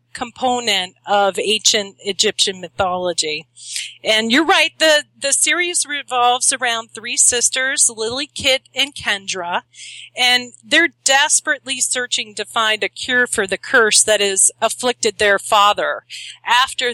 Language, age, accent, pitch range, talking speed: English, 40-59, American, 195-250 Hz, 130 wpm